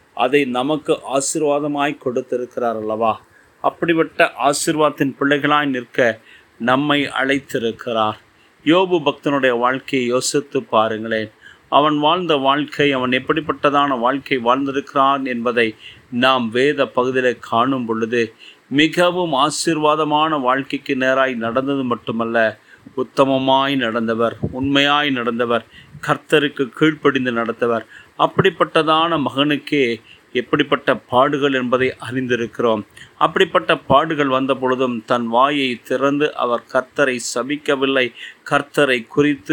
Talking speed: 85 wpm